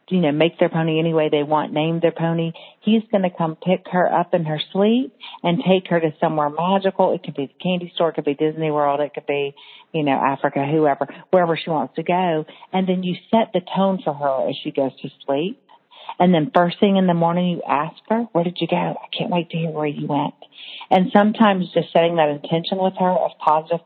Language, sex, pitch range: English, female, 155-185 Hz